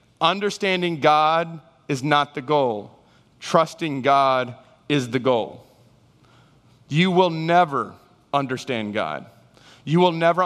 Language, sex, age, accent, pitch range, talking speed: English, male, 30-49, American, 130-165 Hz, 110 wpm